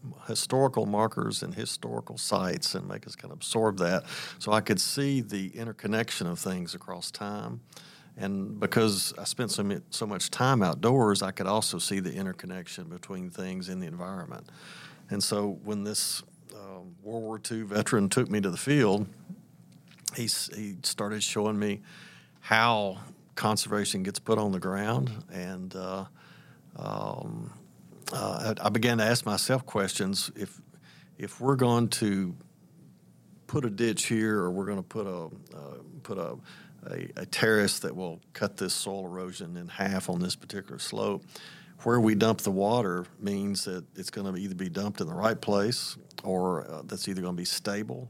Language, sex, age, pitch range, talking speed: English, male, 50-69, 95-115 Hz, 170 wpm